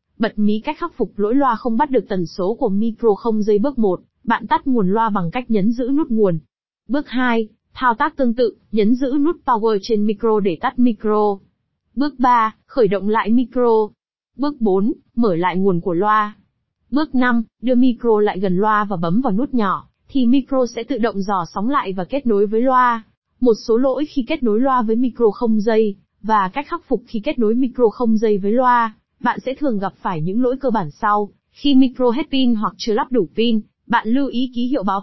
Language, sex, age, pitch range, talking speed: Vietnamese, female, 20-39, 205-250 Hz, 220 wpm